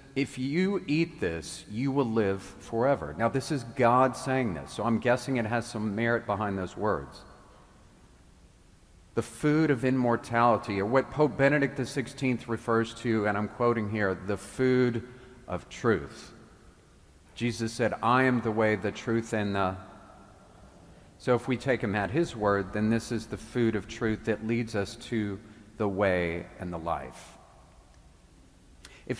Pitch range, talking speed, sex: 95-125 Hz, 160 wpm, male